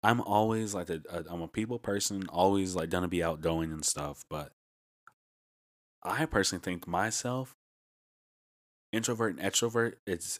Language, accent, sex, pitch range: English, American, male, 80-95 Hz